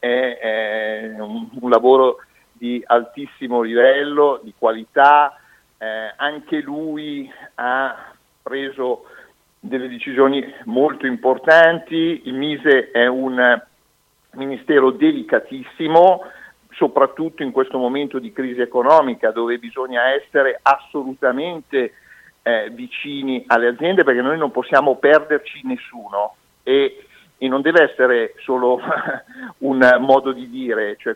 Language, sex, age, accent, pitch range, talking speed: Italian, male, 50-69, native, 125-180 Hz, 105 wpm